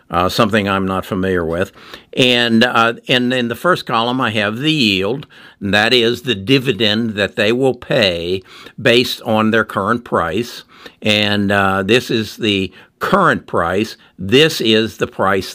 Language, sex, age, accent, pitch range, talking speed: English, male, 60-79, American, 100-120 Hz, 165 wpm